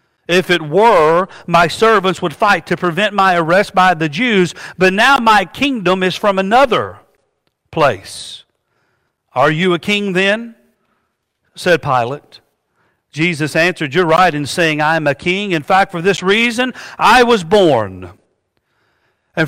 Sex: male